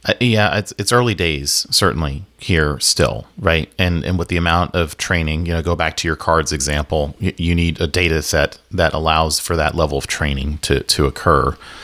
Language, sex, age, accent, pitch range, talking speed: English, male, 40-59, American, 75-90 Hz, 210 wpm